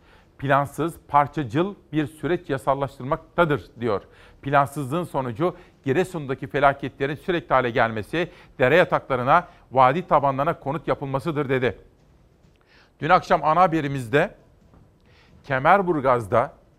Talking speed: 90 wpm